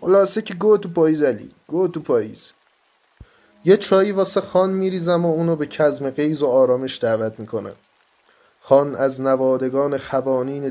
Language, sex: Persian, male